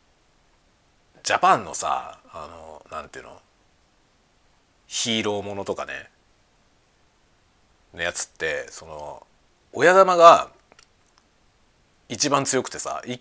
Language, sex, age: Japanese, male, 40-59